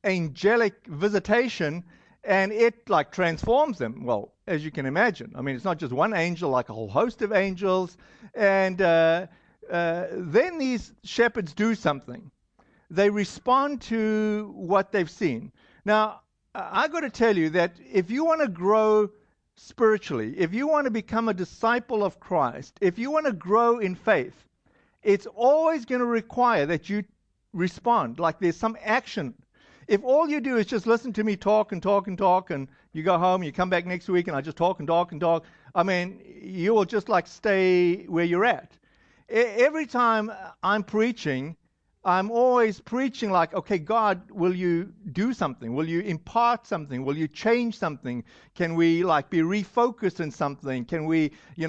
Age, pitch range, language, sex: 50-69, 170-225 Hz, English, male